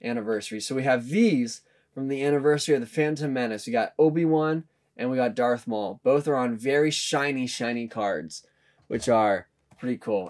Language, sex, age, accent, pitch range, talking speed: English, male, 20-39, American, 135-165 Hz, 180 wpm